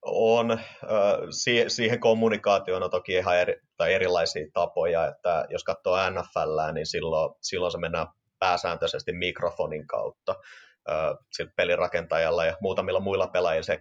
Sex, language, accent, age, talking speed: male, Finnish, native, 30-49, 125 wpm